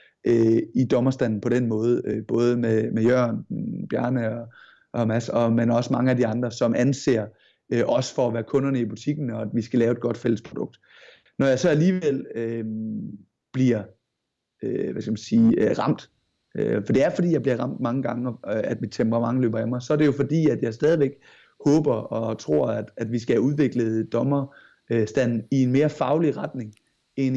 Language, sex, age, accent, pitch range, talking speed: Danish, male, 30-49, native, 115-140 Hz, 200 wpm